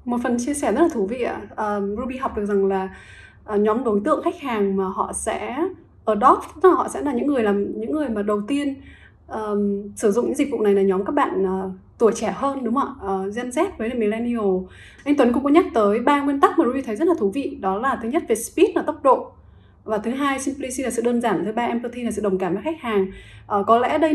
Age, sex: 20-39, female